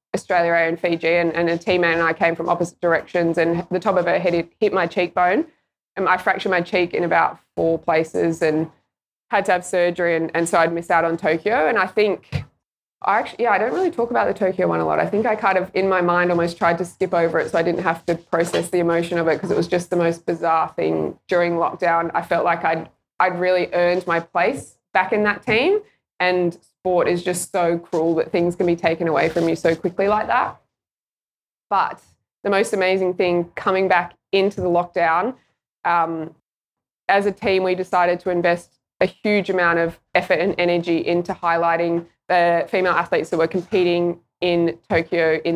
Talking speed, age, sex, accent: 210 wpm, 20-39, female, Australian